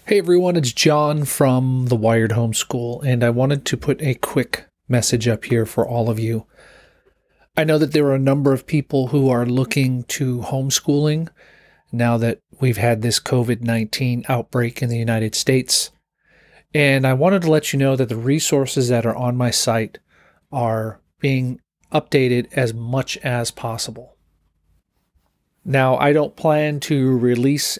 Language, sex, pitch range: English, male, 115-140 Hz